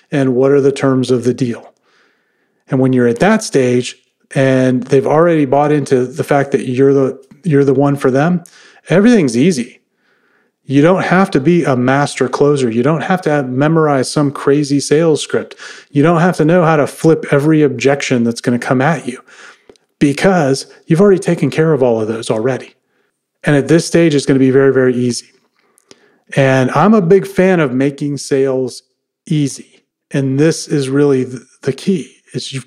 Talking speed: 190 wpm